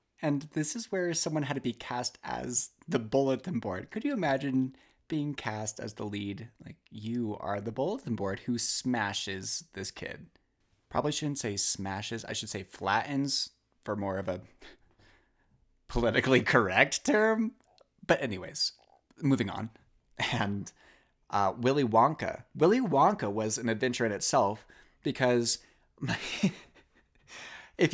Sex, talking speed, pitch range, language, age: male, 135 wpm, 110-165 Hz, English, 30-49